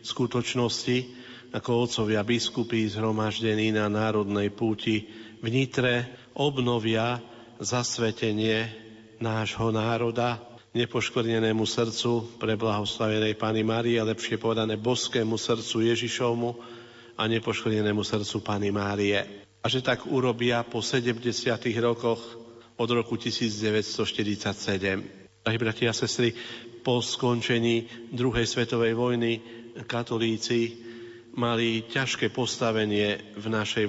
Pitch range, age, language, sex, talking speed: 110-120 Hz, 40-59, Slovak, male, 95 wpm